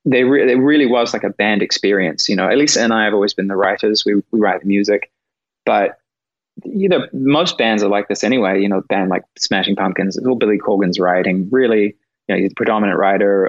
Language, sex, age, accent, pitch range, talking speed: English, male, 20-39, Australian, 105-135 Hz, 235 wpm